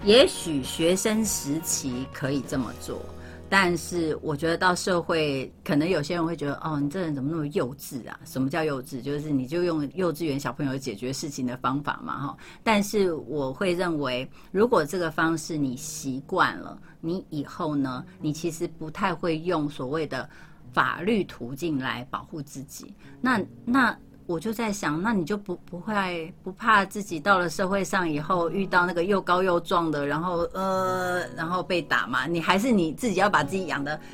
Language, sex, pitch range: Chinese, female, 145-185 Hz